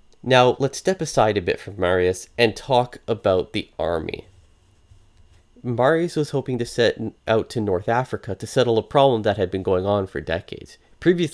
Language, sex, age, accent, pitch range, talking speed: English, male, 30-49, American, 100-130 Hz, 180 wpm